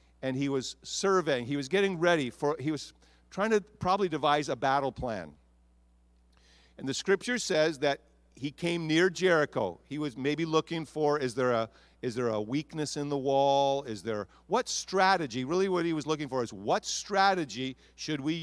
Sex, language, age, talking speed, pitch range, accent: male, English, 50-69, 185 wpm, 95-150 Hz, American